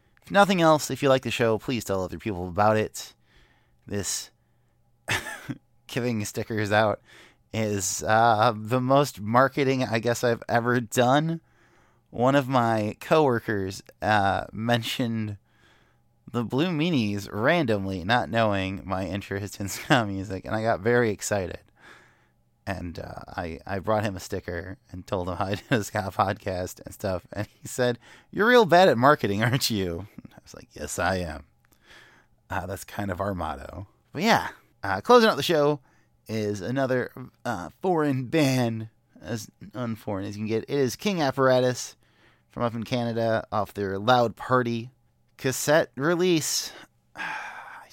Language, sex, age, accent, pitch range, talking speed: English, male, 20-39, American, 105-130 Hz, 155 wpm